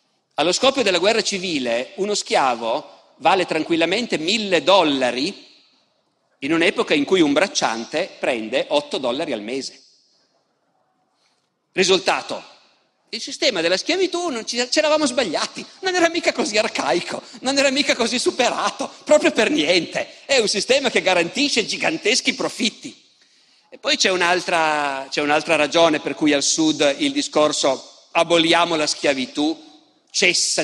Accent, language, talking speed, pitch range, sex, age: native, Italian, 135 wpm, 160-255 Hz, male, 50-69